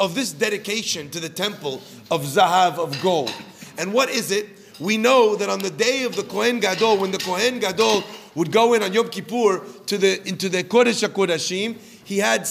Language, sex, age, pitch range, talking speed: English, male, 40-59, 190-235 Hz, 190 wpm